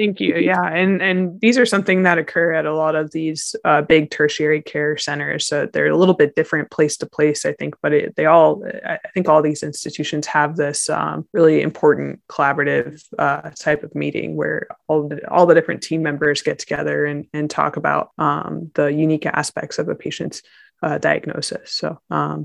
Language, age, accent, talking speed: English, 20-39, American, 200 wpm